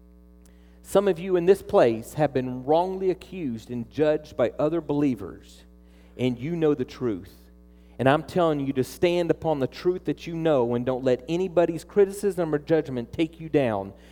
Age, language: 40-59, English